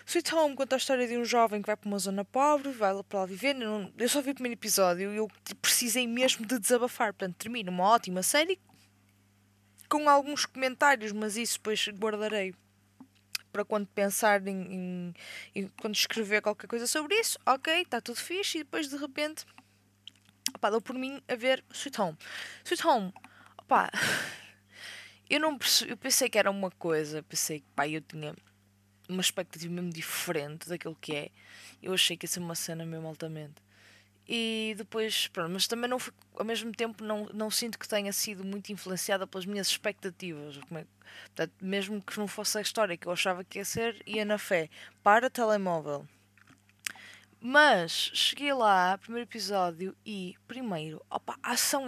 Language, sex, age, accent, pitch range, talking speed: Portuguese, female, 20-39, Brazilian, 175-240 Hz, 180 wpm